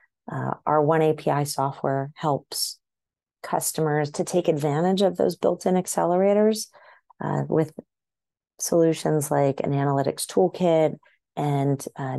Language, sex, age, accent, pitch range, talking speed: English, female, 30-49, American, 145-180 Hz, 115 wpm